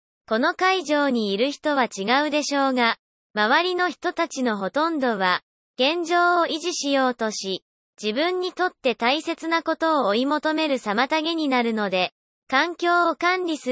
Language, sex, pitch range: Japanese, male, 240-330 Hz